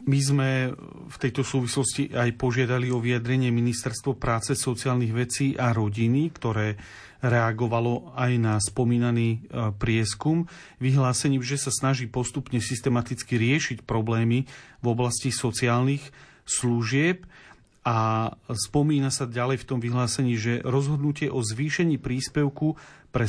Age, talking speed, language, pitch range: 40-59, 120 wpm, Slovak, 115-140 Hz